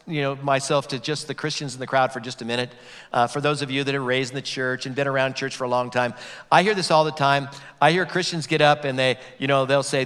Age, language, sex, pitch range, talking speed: 50-69, English, male, 130-165 Hz, 300 wpm